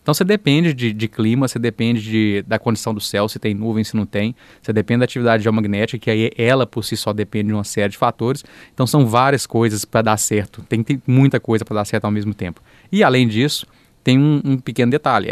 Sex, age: male, 20-39